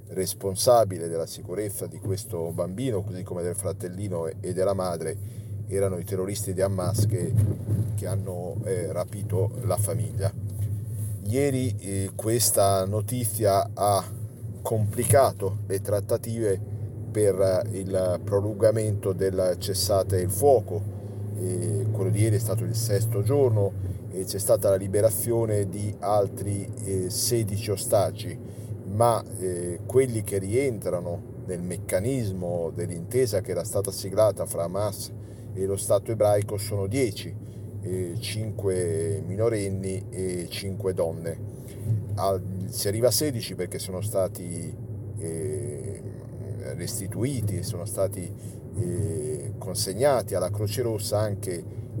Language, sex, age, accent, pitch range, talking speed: Italian, male, 40-59, native, 95-110 Hz, 120 wpm